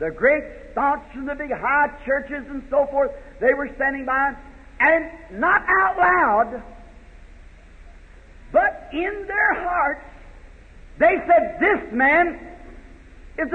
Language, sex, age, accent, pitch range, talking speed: English, male, 50-69, American, 250-335 Hz, 125 wpm